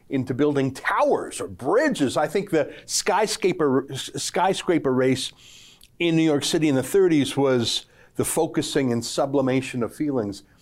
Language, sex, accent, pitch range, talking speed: English, male, American, 125-165 Hz, 140 wpm